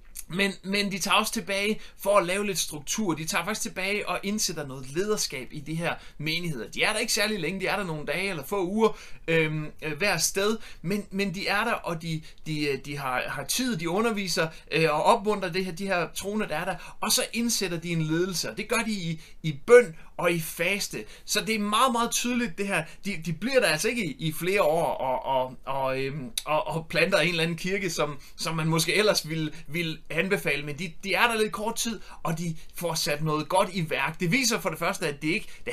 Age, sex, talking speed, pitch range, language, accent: 30-49, male, 235 wpm, 155-200 Hz, Danish, native